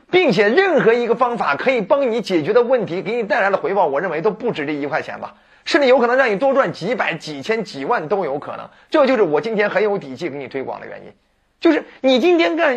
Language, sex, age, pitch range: Chinese, male, 30-49, 190-275 Hz